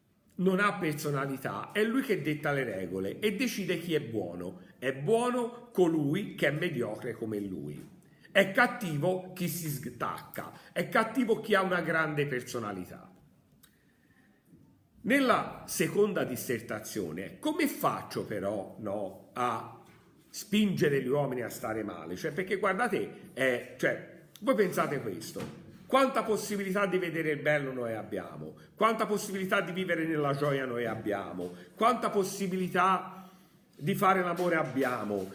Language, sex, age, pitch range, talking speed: Italian, male, 50-69, 125-200 Hz, 130 wpm